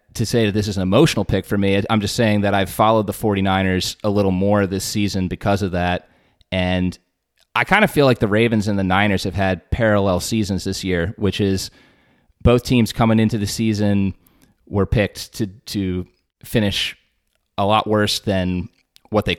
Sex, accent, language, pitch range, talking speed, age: male, American, English, 90-115 Hz, 190 wpm, 30-49